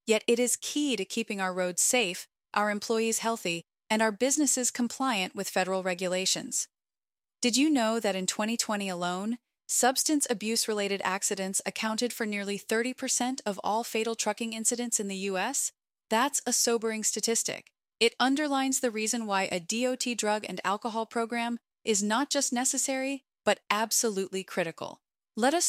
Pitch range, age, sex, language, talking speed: 195-245 Hz, 30-49, female, English, 150 wpm